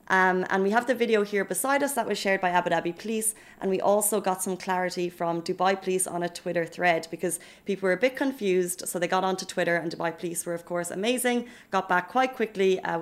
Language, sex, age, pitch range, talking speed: Arabic, female, 30-49, 175-210 Hz, 240 wpm